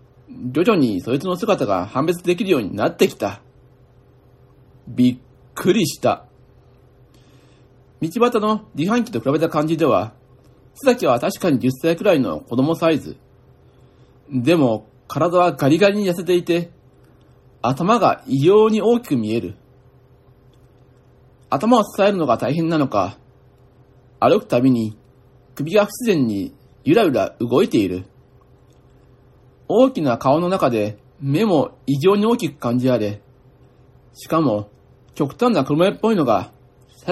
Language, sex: Japanese, male